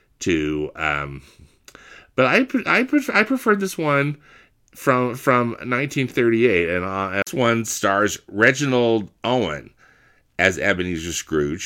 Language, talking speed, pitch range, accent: English, 120 wpm, 85-115 Hz, American